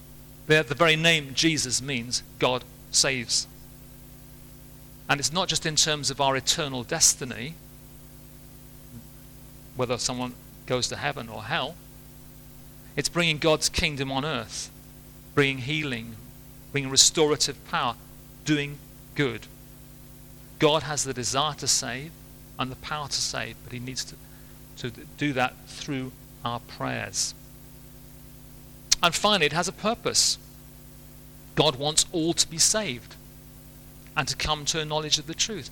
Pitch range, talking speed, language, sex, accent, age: 130-145 Hz, 135 wpm, English, male, British, 40-59